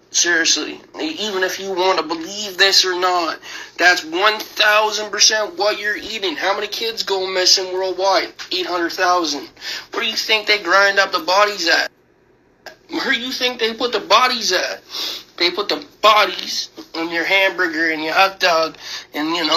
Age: 20-39